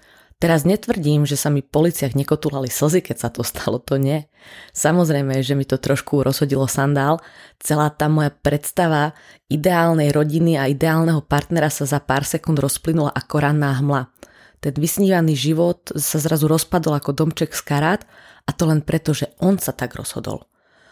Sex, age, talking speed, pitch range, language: female, 20-39, 165 wpm, 140-165 Hz, Slovak